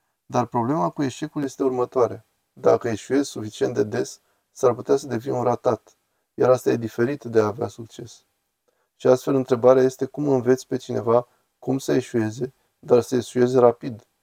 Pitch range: 120-140 Hz